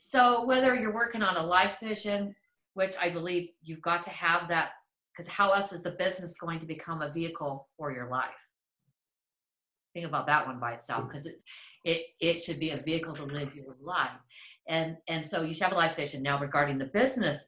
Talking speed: 210 wpm